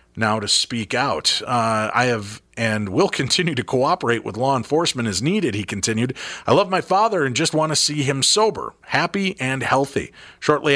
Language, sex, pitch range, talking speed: English, male, 115-155 Hz, 190 wpm